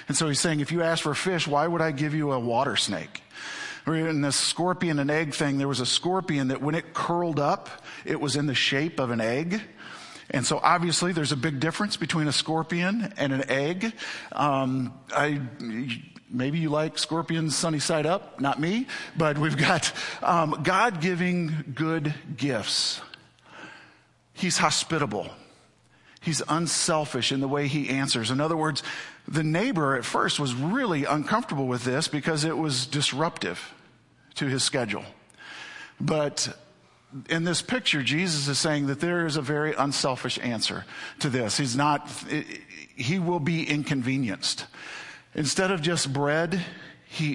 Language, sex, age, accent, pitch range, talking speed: English, male, 40-59, American, 140-165 Hz, 160 wpm